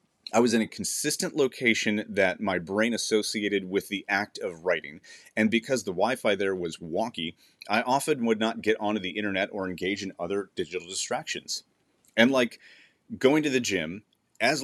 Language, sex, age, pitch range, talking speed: English, male, 30-49, 100-135 Hz, 175 wpm